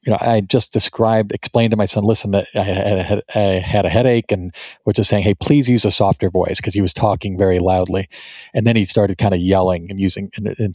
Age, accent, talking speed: 40-59, American, 240 wpm